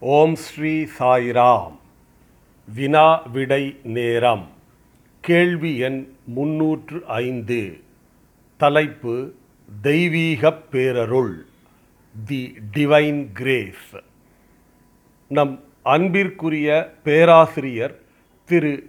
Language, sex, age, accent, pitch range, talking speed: Tamil, male, 40-59, native, 125-155 Hz, 60 wpm